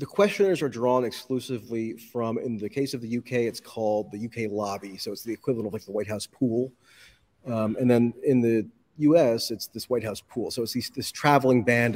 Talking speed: 220 wpm